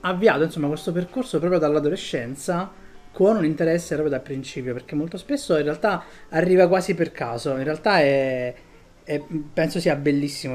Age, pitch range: 20-39, 130-155 Hz